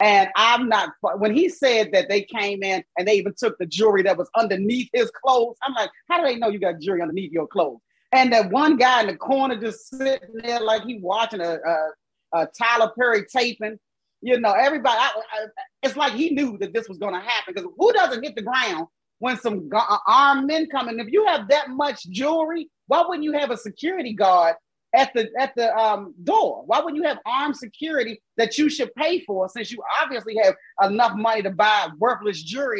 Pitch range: 205-275 Hz